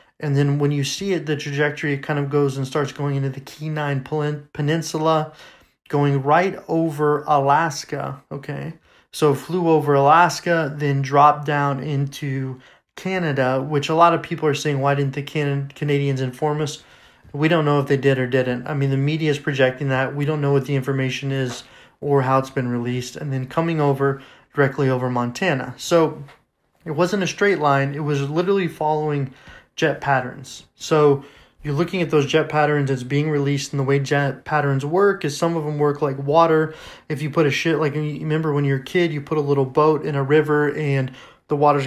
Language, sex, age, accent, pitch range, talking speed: English, male, 30-49, American, 140-160 Hz, 200 wpm